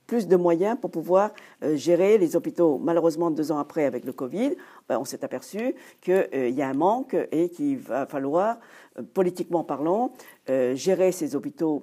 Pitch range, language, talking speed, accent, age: 150-220 Hz, French, 160 wpm, French, 50-69